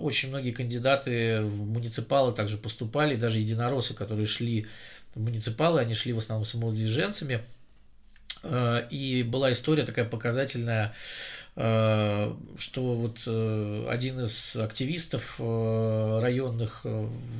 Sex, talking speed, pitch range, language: male, 100 wpm, 115-150 Hz, Russian